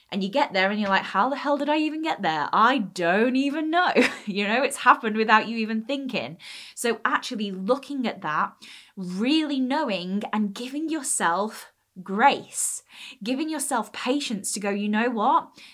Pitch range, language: 195-240 Hz, English